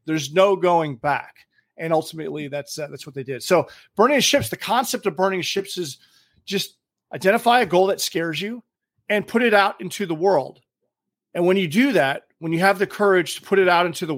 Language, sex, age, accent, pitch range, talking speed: English, male, 40-59, American, 145-195 Hz, 215 wpm